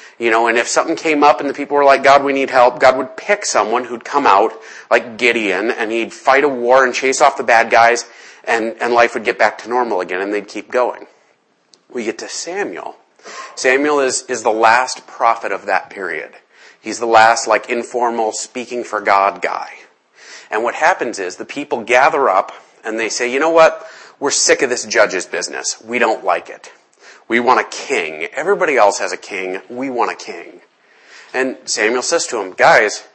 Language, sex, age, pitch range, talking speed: English, male, 30-49, 110-135 Hz, 205 wpm